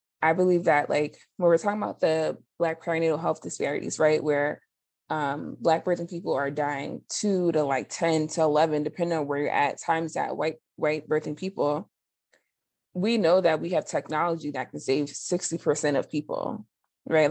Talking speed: 175 wpm